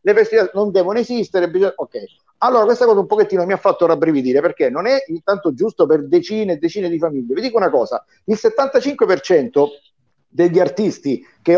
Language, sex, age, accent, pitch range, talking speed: Italian, male, 50-69, native, 165-250 Hz, 185 wpm